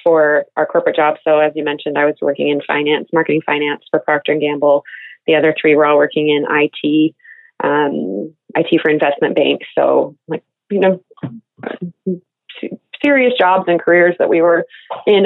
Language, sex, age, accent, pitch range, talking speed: English, female, 20-39, American, 155-190 Hz, 175 wpm